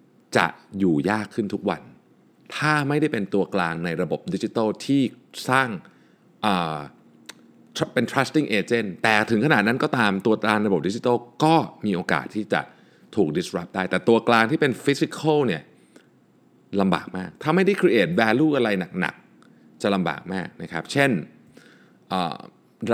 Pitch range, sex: 95-145 Hz, male